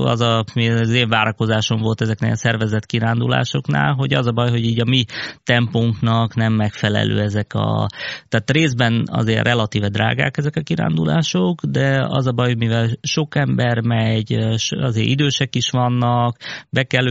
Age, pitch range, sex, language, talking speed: 20-39, 110-125 Hz, male, Hungarian, 155 wpm